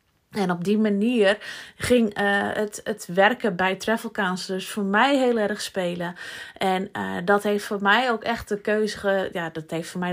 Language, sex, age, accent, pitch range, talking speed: Dutch, female, 20-39, Dutch, 185-235 Hz, 200 wpm